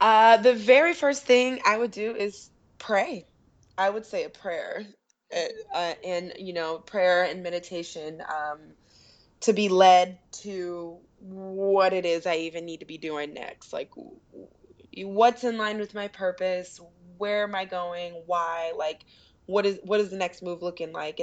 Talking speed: 165 wpm